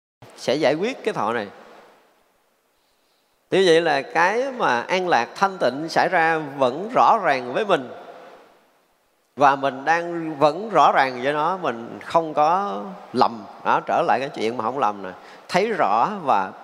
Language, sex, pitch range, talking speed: Vietnamese, male, 145-200 Hz, 165 wpm